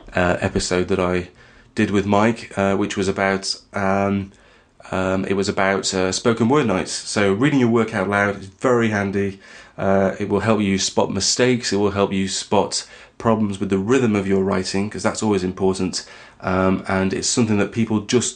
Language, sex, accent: English, male, British